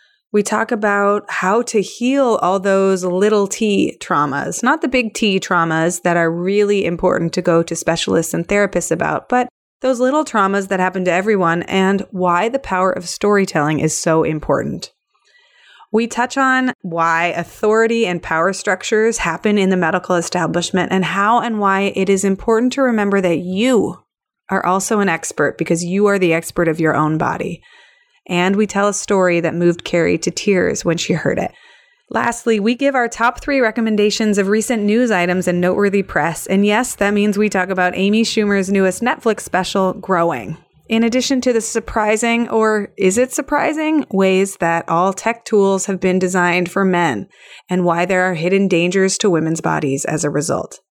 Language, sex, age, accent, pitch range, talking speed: English, female, 20-39, American, 180-225 Hz, 180 wpm